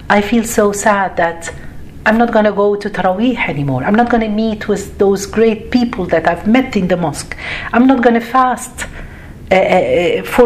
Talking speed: 200 wpm